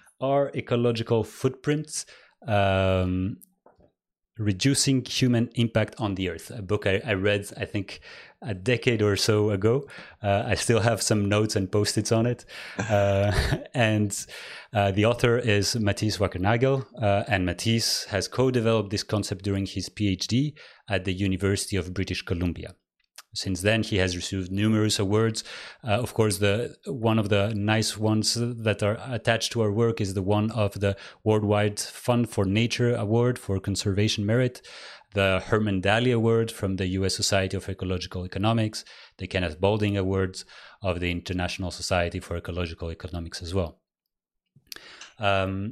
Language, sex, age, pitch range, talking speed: English, male, 30-49, 95-115 Hz, 150 wpm